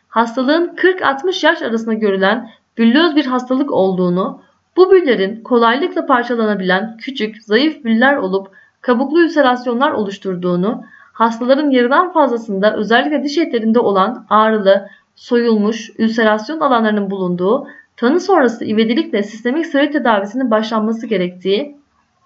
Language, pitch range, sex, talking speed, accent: Turkish, 200-280 Hz, female, 110 wpm, native